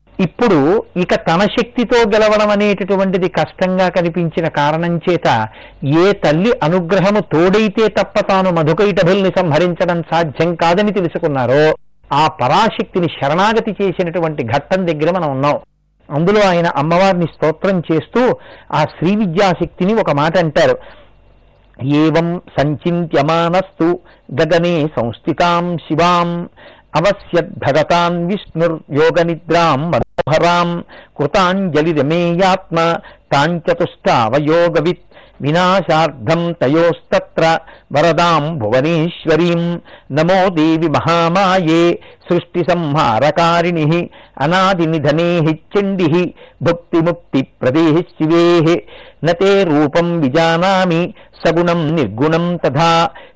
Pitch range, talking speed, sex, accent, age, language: 160-185 Hz, 75 wpm, male, native, 60-79, Telugu